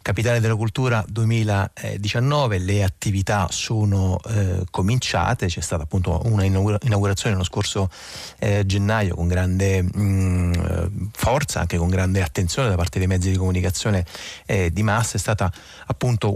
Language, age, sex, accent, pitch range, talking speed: Italian, 30-49, male, native, 95-110 Hz, 140 wpm